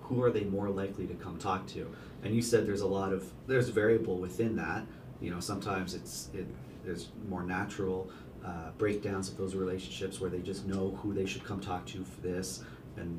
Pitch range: 95-105 Hz